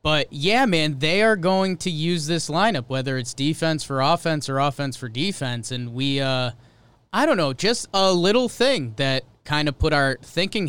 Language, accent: English, American